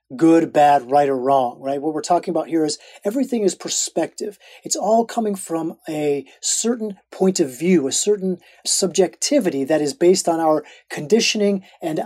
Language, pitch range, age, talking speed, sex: English, 145-185 Hz, 30-49, 170 wpm, male